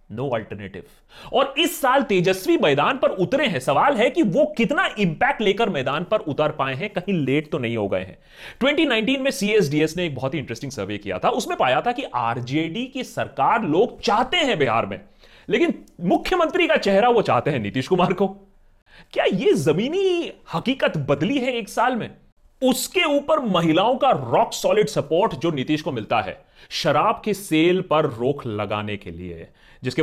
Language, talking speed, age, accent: Hindi, 160 wpm, 30-49, native